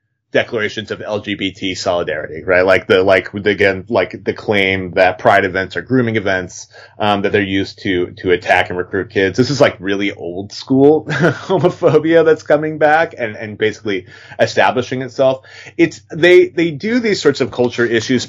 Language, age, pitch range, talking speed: English, 30-49, 100-130 Hz, 170 wpm